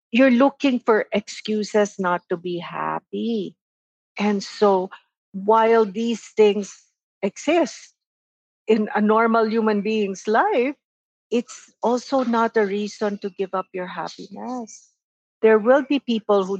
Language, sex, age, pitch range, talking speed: English, female, 50-69, 200-250 Hz, 125 wpm